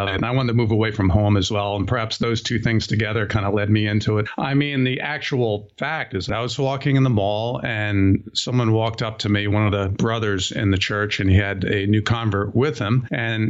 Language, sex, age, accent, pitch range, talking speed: English, male, 50-69, American, 100-125 Hz, 260 wpm